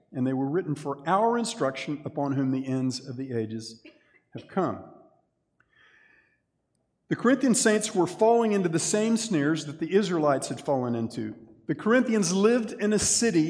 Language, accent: English, American